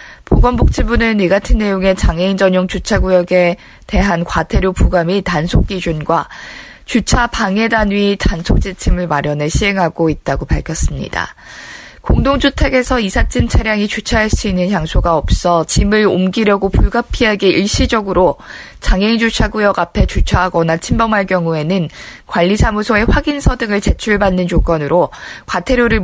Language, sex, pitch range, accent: Korean, female, 180-225 Hz, native